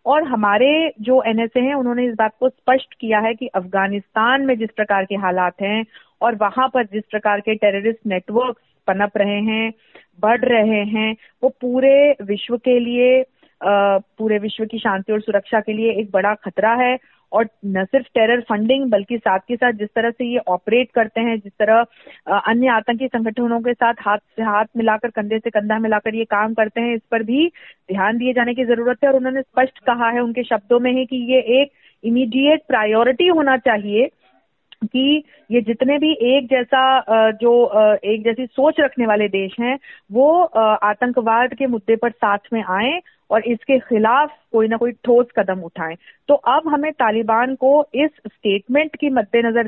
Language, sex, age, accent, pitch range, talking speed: Hindi, female, 30-49, native, 215-255 Hz, 185 wpm